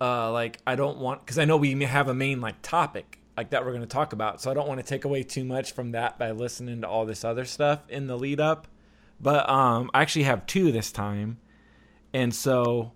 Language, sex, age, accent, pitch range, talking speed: English, male, 30-49, American, 115-145 Hz, 245 wpm